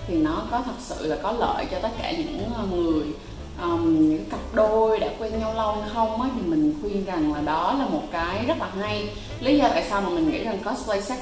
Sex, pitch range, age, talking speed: female, 195-310 Hz, 20-39, 240 wpm